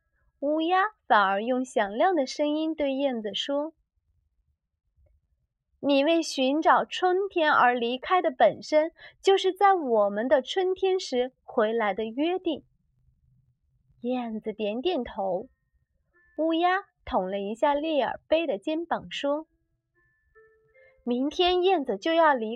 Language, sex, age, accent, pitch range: Chinese, female, 20-39, native, 220-350 Hz